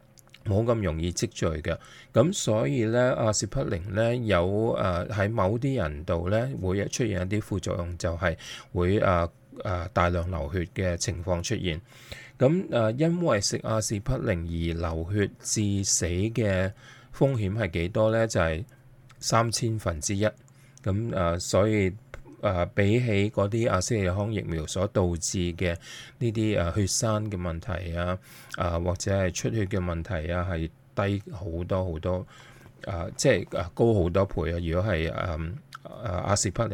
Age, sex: 20-39, male